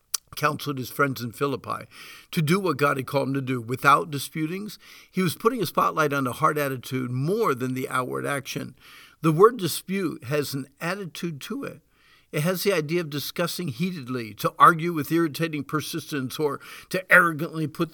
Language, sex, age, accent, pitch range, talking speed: English, male, 50-69, American, 140-180 Hz, 180 wpm